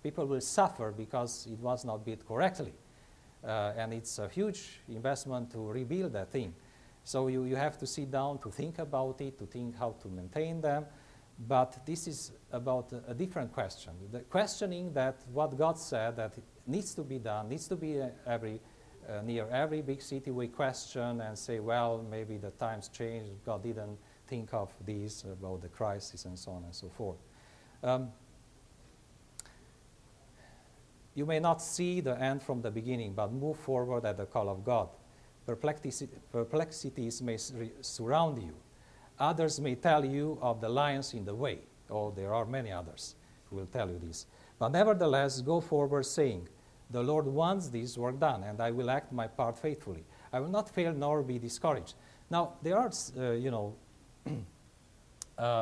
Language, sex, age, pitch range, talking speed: English, male, 50-69, 110-140 Hz, 175 wpm